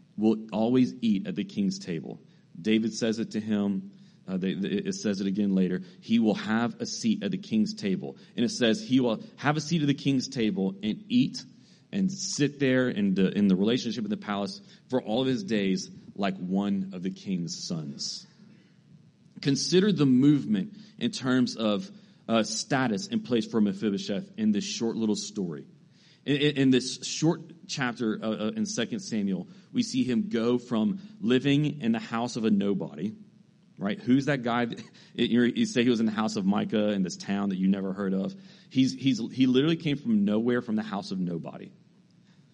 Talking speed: 185 wpm